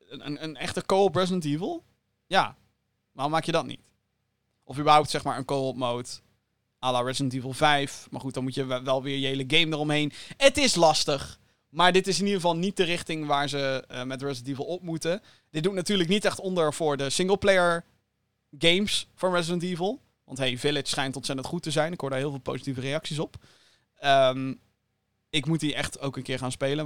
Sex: male